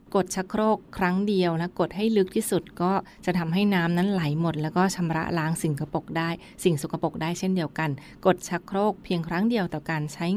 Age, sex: 20-39, female